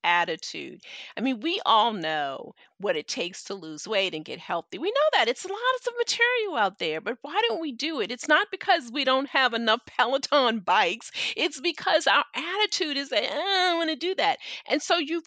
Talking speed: 215 wpm